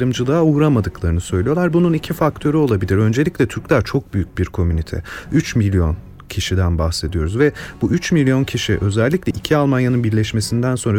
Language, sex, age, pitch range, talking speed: Turkish, male, 40-59, 100-150 Hz, 150 wpm